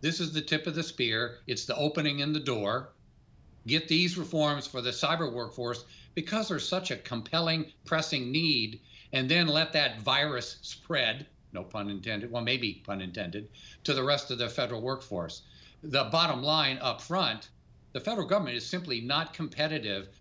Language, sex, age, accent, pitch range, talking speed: English, male, 50-69, American, 120-150 Hz, 175 wpm